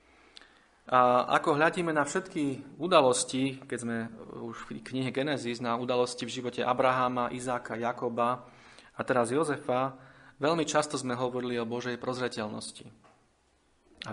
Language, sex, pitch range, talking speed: Slovak, male, 115-135 Hz, 125 wpm